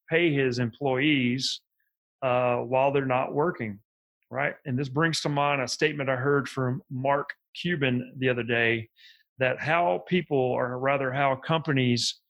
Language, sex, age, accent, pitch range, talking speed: English, male, 30-49, American, 125-145 Hz, 150 wpm